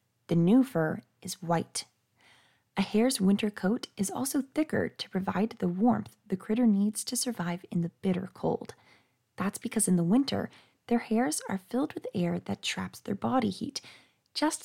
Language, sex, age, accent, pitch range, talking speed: English, female, 30-49, American, 175-235 Hz, 170 wpm